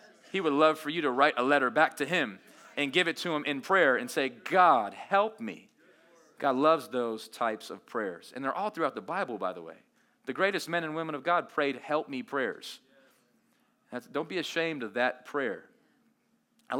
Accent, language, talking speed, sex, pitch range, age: American, English, 205 wpm, male, 145-195 Hz, 30-49